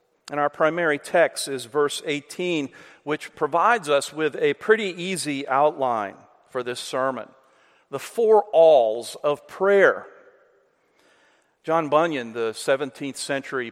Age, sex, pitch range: 50-69, male, 135-185 Hz